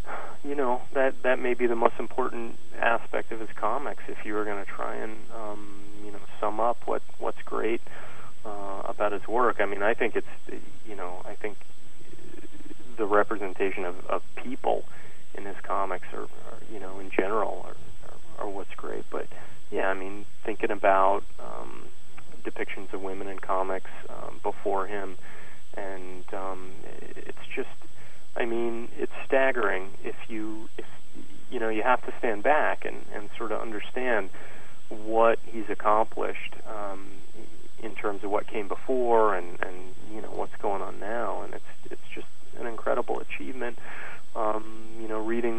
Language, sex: English, male